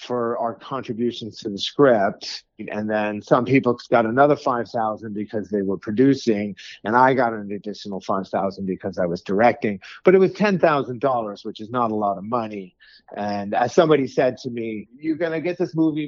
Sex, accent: male, American